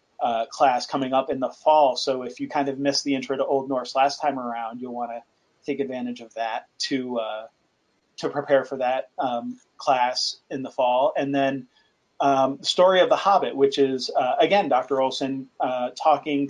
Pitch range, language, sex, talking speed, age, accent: 130-145 Hz, English, male, 195 wpm, 30-49, American